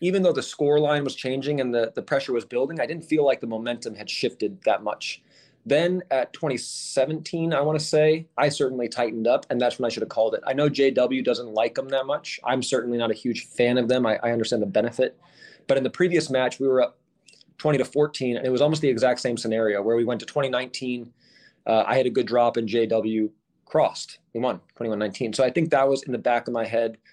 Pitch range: 115-140 Hz